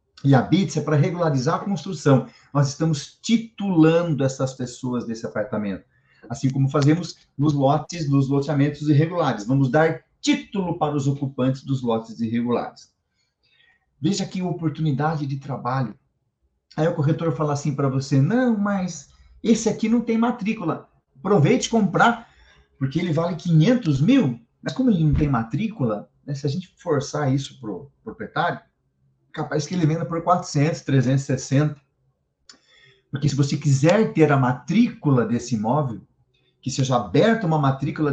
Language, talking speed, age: Portuguese, 150 wpm, 40-59